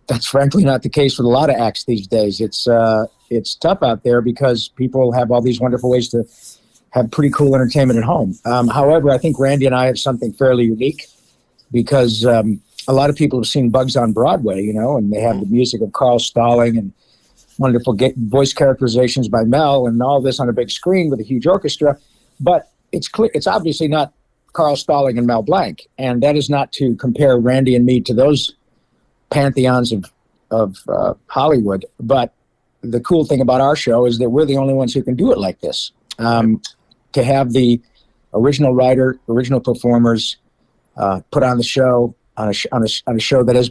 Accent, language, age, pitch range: American, English, 50-69, 120-135 Hz